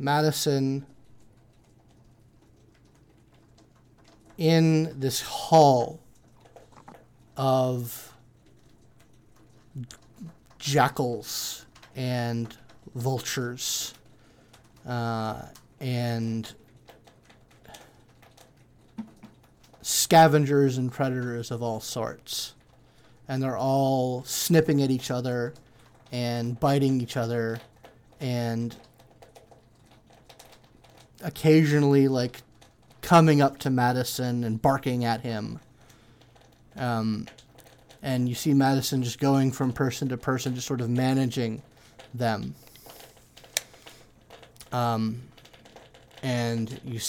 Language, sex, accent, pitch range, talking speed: English, male, American, 115-135 Hz, 75 wpm